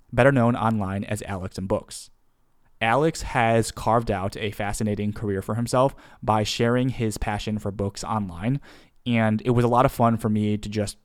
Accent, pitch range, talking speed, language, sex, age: American, 100-120 Hz, 185 wpm, English, male, 20-39